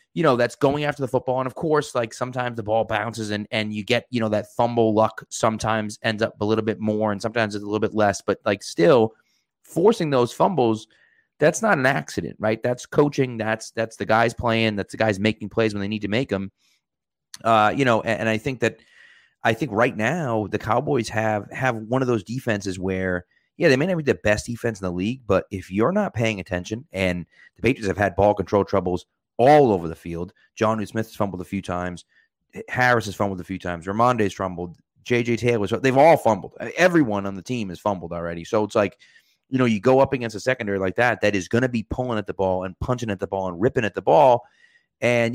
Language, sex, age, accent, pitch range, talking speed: English, male, 30-49, American, 100-120 Hz, 235 wpm